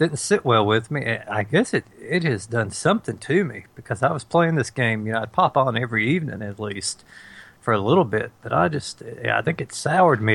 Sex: male